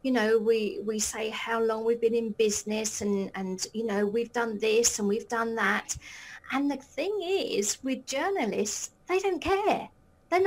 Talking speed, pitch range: 185 wpm, 230-300 Hz